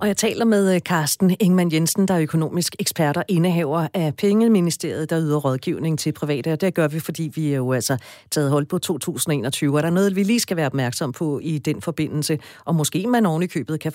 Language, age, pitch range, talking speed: Danish, 40-59, 155-195 Hz, 225 wpm